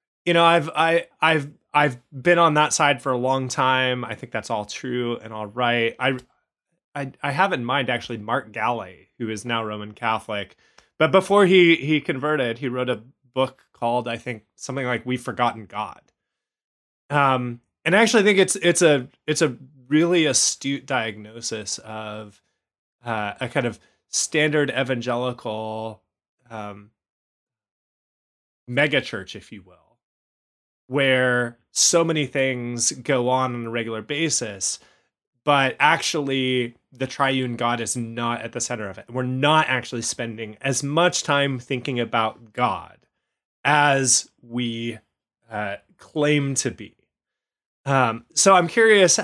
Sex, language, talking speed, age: male, English, 145 wpm, 20-39